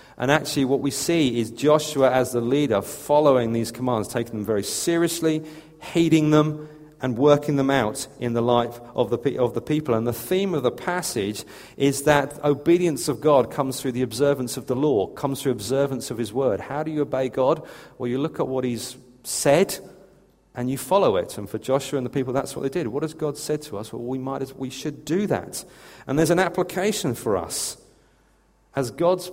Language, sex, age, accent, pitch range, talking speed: English, male, 40-59, British, 125-150 Hz, 215 wpm